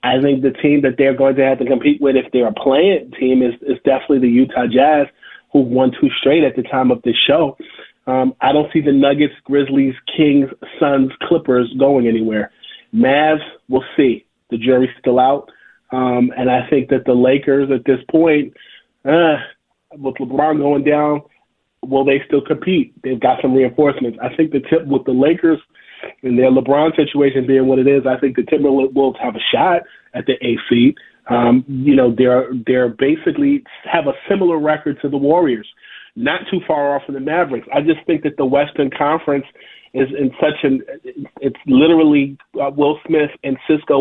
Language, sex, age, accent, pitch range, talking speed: English, male, 30-49, American, 130-150 Hz, 190 wpm